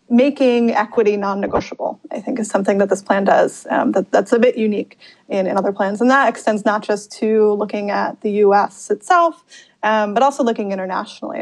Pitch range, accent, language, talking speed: 200-235 Hz, American, English, 195 wpm